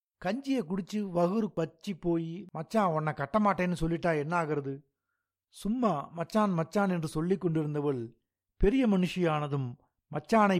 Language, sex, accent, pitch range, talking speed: Tamil, male, native, 140-180 Hz, 115 wpm